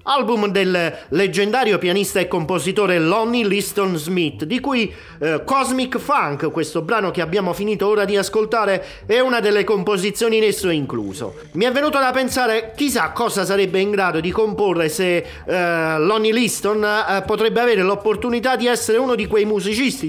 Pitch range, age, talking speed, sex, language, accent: 180-230 Hz, 40-59, 165 wpm, male, Italian, native